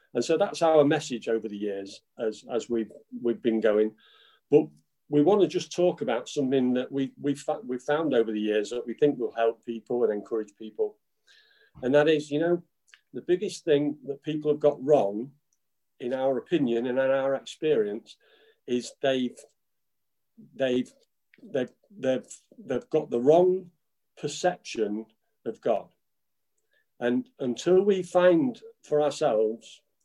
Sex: male